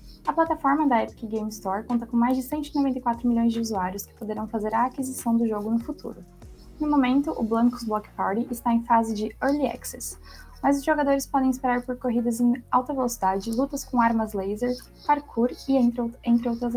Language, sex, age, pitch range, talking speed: Portuguese, female, 10-29, 215-250 Hz, 195 wpm